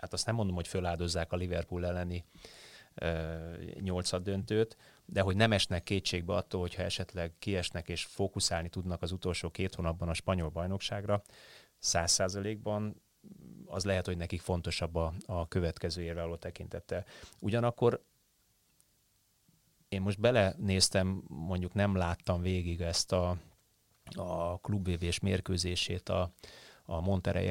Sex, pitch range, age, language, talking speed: male, 85-100 Hz, 30-49, Hungarian, 125 wpm